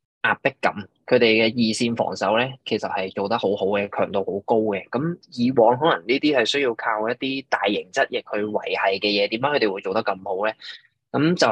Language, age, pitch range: Chinese, 20-39, 100-125 Hz